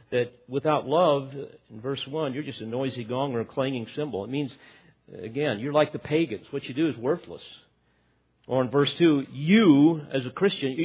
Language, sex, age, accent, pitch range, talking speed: English, male, 50-69, American, 115-160 Hz, 195 wpm